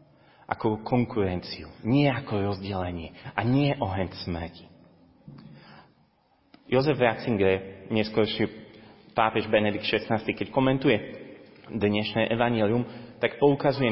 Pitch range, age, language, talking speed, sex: 95-125 Hz, 30-49, Slovak, 90 wpm, male